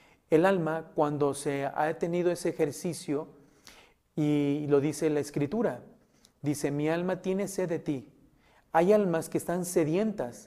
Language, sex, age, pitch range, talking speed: Spanish, male, 40-59, 145-185 Hz, 145 wpm